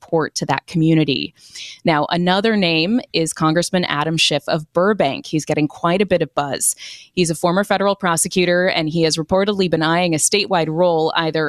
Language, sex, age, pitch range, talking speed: English, female, 20-39, 160-195 Hz, 180 wpm